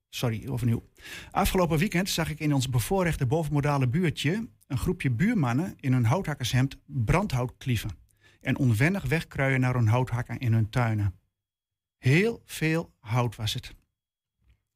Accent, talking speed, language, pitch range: Dutch, 135 wpm, Dutch, 115-155 Hz